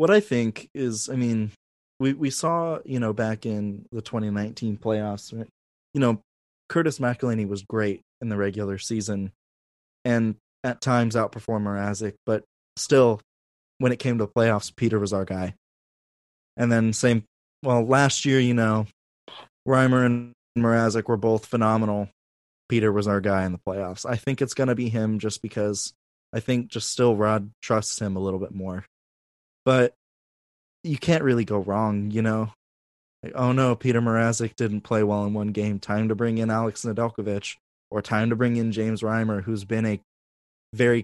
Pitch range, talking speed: 100-120 Hz, 175 wpm